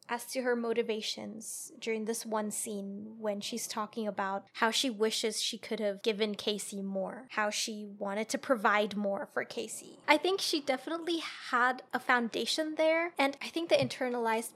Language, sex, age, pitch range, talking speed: English, female, 20-39, 220-265 Hz, 175 wpm